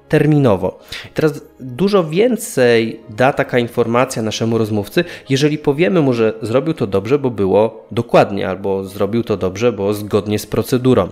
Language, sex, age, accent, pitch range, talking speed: Polish, male, 20-39, native, 100-140 Hz, 145 wpm